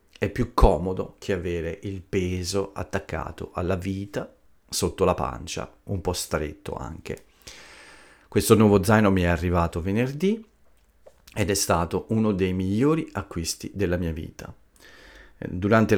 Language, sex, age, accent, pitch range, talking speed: Italian, male, 40-59, native, 85-105 Hz, 130 wpm